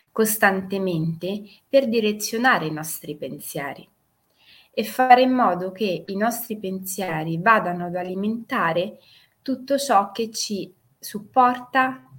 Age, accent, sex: 20-39, native, female